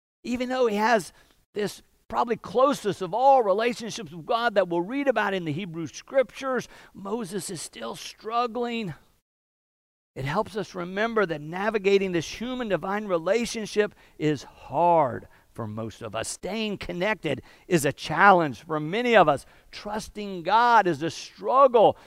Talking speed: 145 wpm